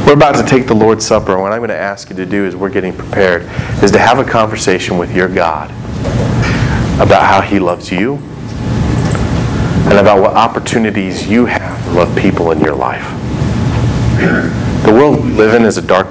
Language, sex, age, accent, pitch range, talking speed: English, male, 30-49, American, 100-125 Hz, 195 wpm